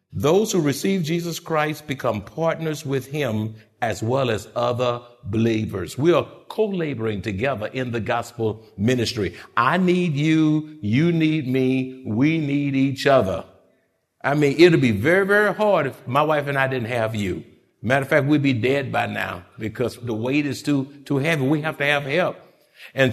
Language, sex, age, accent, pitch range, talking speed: English, male, 60-79, American, 120-170 Hz, 180 wpm